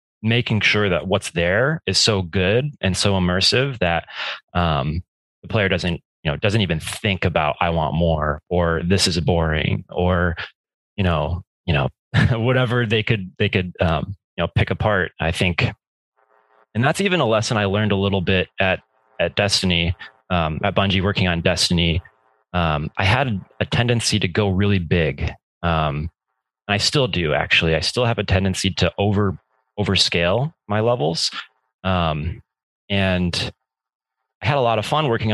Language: English